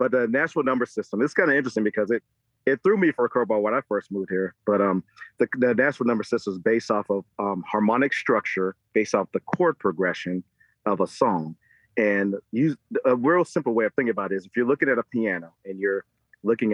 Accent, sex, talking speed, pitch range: American, male, 225 wpm, 95-115 Hz